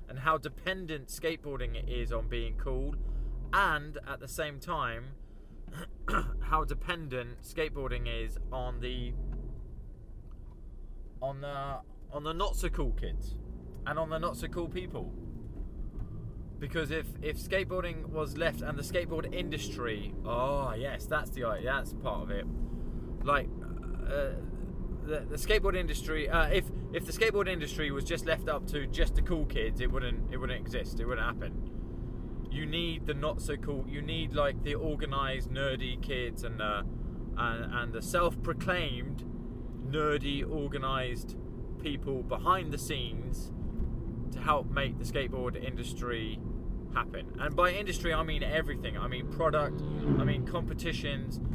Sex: male